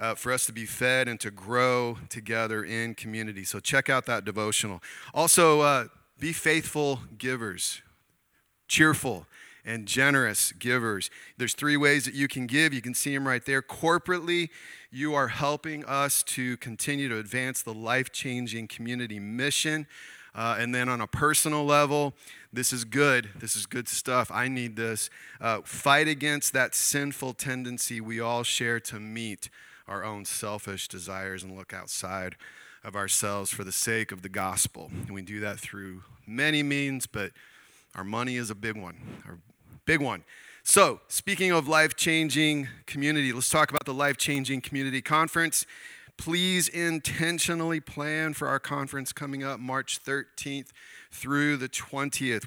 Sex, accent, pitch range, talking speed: male, American, 115-145 Hz, 155 wpm